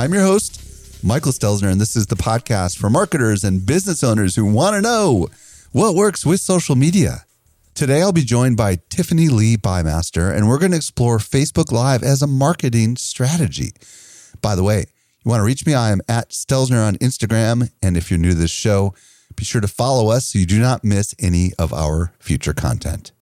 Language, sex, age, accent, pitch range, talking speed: English, male, 40-59, American, 95-135 Hz, 205 wpm